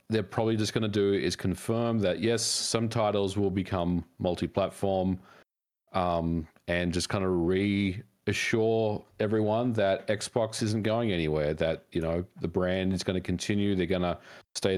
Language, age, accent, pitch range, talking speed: English, 40-59, Australian, 90-110 Hz, 160 wpm